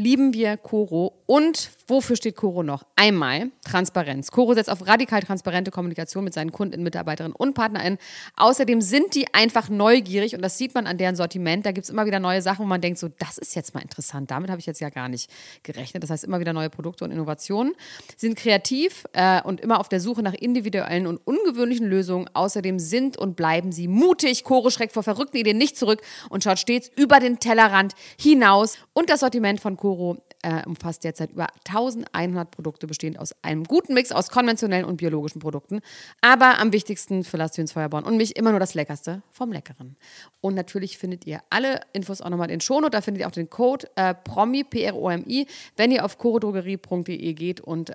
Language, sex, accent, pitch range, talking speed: German, female, German, 170-230 Hz, 200 wpm